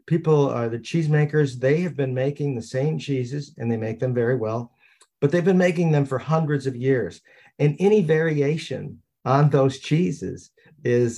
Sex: male